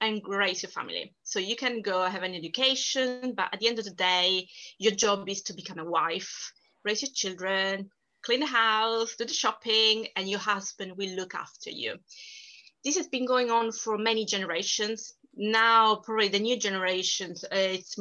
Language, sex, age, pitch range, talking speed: English, female, 20-39, 195-250 Hz, 185 wpm